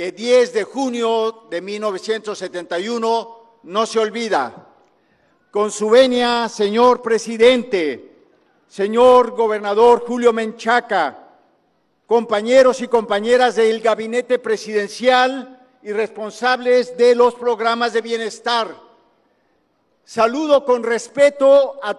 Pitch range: 225-265 Hz